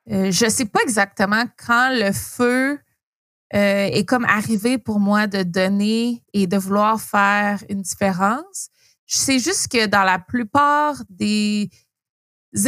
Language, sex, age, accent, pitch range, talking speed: French, female, 20-39, Canadian, 195-235 Hz, 145 wpm